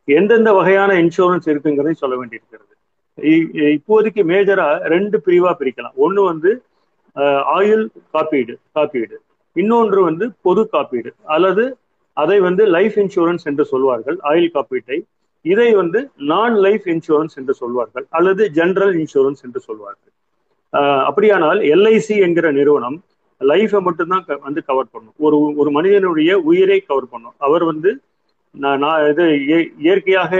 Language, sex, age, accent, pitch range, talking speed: Tamil, male, 40-59, native, 150-215 Hz, 90 wpm